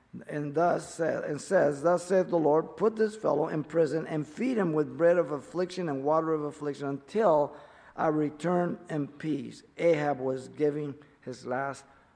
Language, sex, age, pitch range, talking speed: English, male, 50-69, 130-165 Hz, 170 wpm